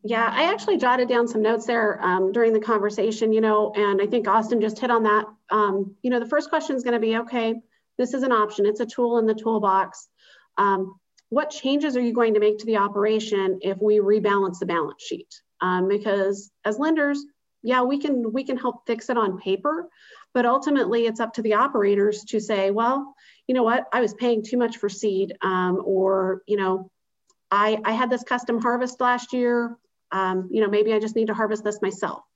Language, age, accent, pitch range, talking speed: English, 40-59, American, 200-240 Hz, 215 wpm